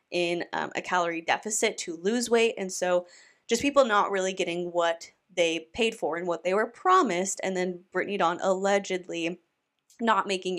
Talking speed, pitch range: 175 wpm, 175-205 Hz